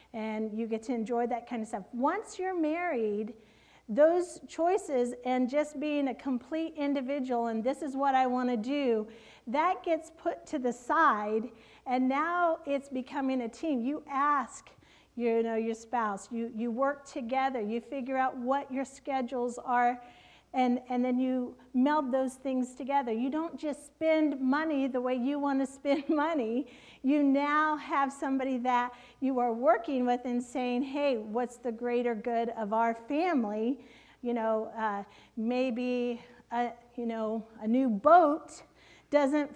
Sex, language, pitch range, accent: female, English, 240-295 Hz, American